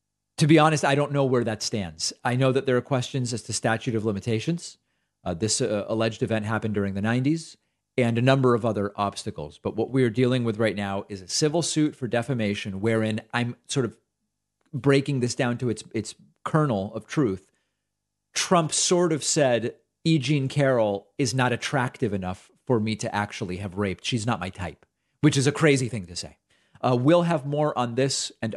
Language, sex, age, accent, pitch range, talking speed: English, male, 40-59, American, 115-145 Hz, 200 wpm